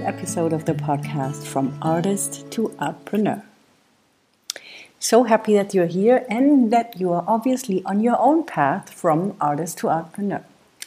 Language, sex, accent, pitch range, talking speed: English, female, German, 160-210 Hz, 145 wpm